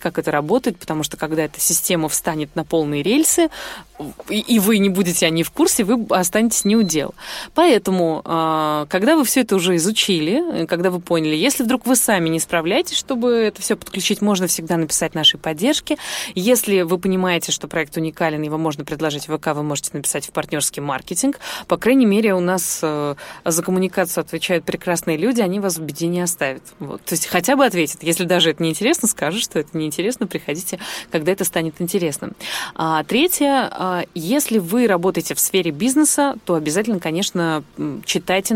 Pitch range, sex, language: 160-210 Hz, female, Russian